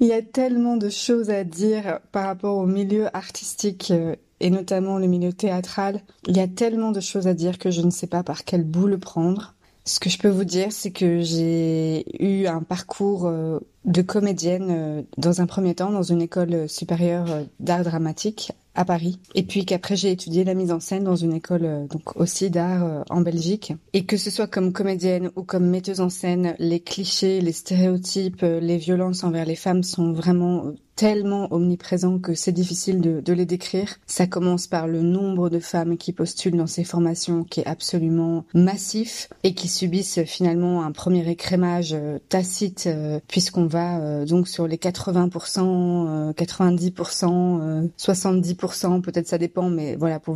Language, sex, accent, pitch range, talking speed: French, female, French, 170-190 Hz, 180 wpm